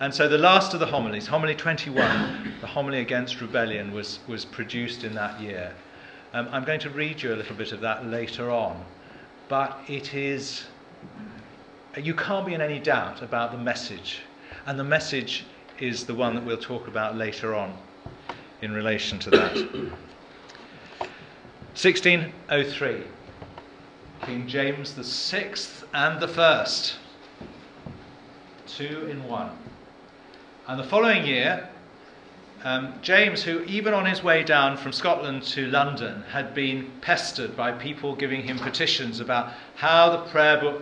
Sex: male